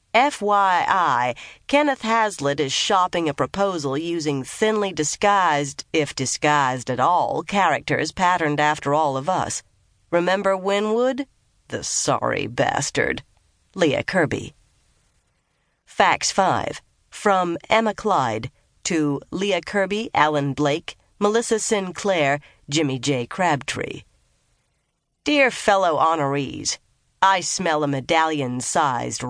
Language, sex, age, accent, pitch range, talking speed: English, female, 40-59, American, 140-195 Hz, 100 wpm